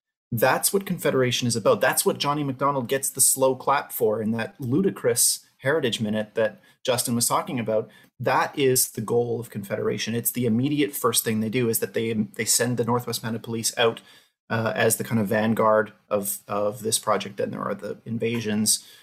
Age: 30-49